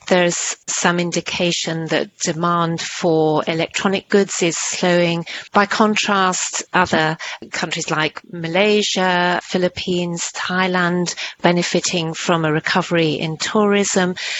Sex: female